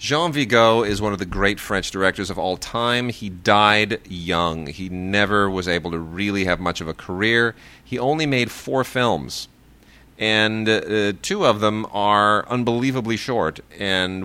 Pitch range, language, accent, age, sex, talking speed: 95-120 Hz, English, American, 30-49, male, 170 wpm